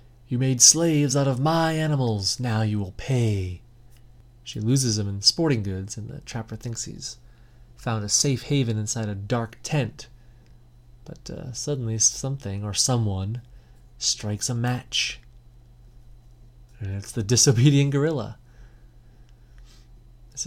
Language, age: English, 30-49